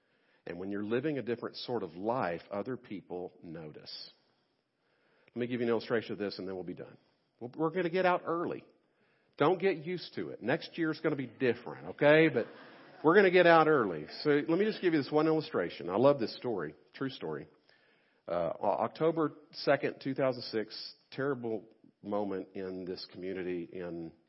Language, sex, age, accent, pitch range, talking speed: English, male, 50-69, American, 95-135 Hz, 190 wpm